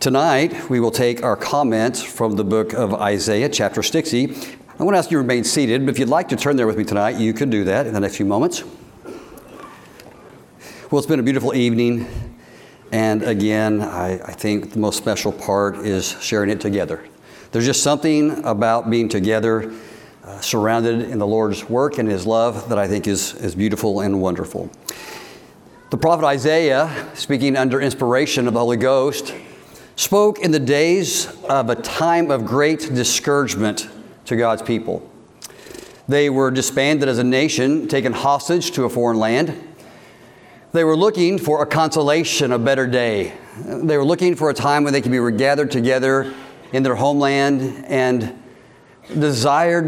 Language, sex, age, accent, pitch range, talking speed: English, male, 60-79, American, 110-145 Hz, 170 wpm